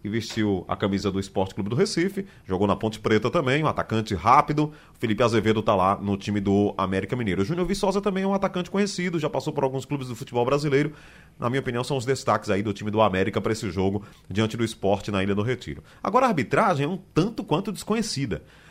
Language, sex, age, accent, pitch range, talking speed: Portuguese, male, 30-49, Brazilian, 110-180 Hz, 225 wpm